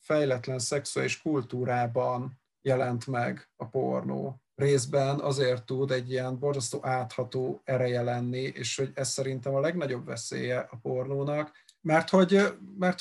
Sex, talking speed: male, 130 wpm